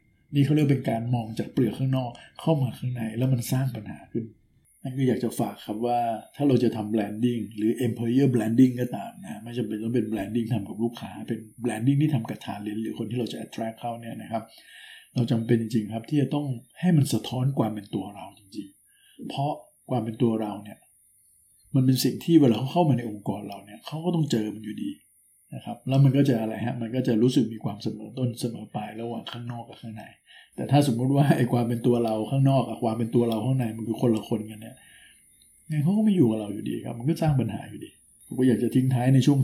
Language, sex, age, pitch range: Thai, male, 60-79, 110-130 Hz